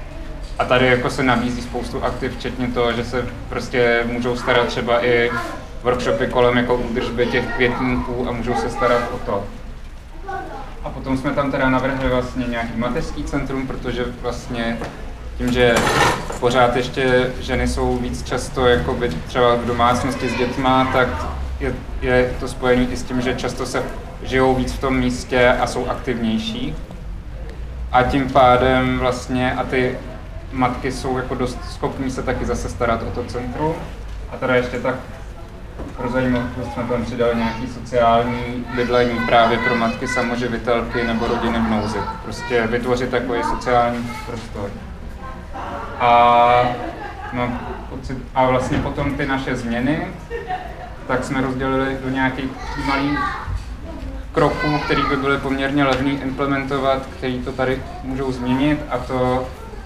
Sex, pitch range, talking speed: male, 120-130 Hz, 140 wpm